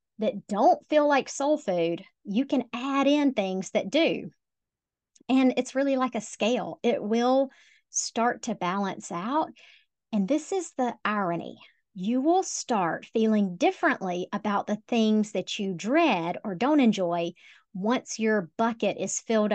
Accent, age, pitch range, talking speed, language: American, 40-59, 195-275 Hz, 150 wpm, English